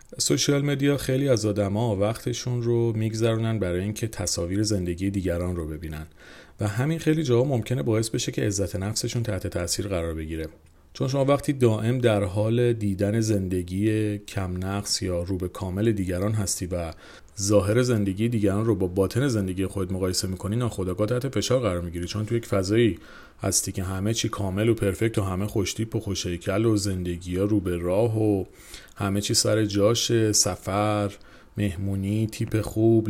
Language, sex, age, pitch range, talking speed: Persian, male, 40-59, 95-115 Hz, 160 wpm